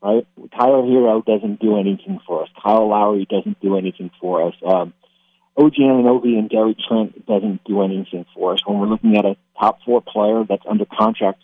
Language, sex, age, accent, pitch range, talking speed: English, male, 50-69, American, 100-115 Hz, 190 wpm